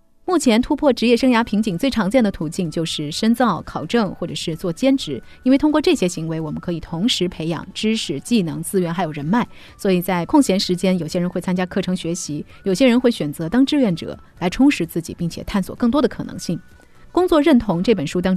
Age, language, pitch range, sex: 30-49, Chinese, 170-245 Hz, female